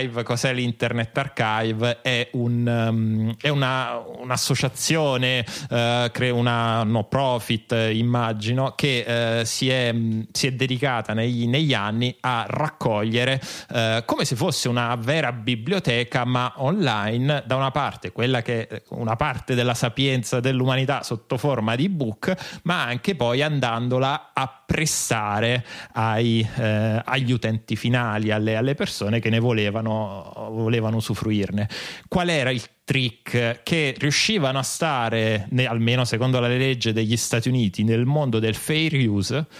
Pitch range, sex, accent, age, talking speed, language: 115-135 Hz, male, native, 30-49, 135 wpm, Italian